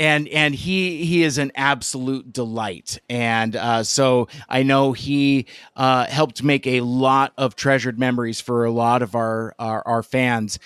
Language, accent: English, American